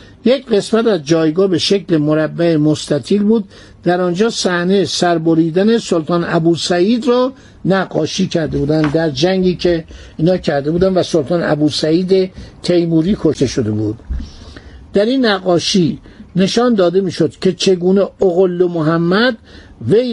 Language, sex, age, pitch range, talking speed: Persian, male, 60-79, 160-220 Hz, 130 wpm